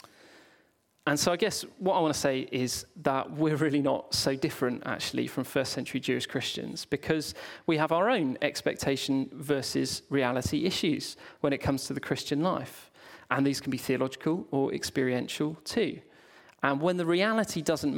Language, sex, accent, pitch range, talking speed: English, male, British, 140-170 Hz, 170 wpm